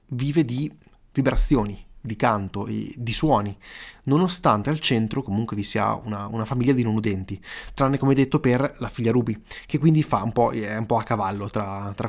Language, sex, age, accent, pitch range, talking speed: Italian, male, 20-39, native, 115-155 Hz, 190 wpm